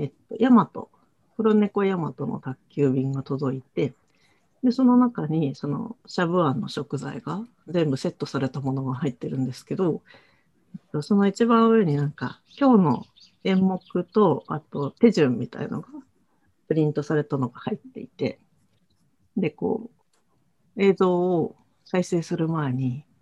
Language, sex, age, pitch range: Japanese, female, 50-69, 145-210 Hz